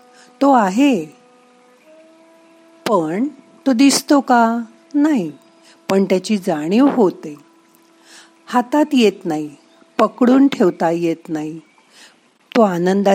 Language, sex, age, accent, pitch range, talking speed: Marathi, female, 50-69, native, 195-295 Hz, 65 wpm